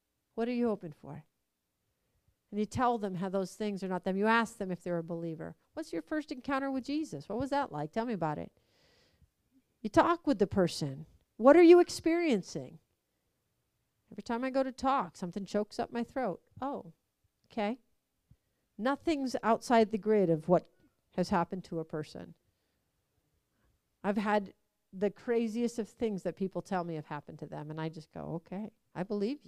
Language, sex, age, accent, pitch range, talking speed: English, female, 50-69, American, 185-290 Hz, 185 wpm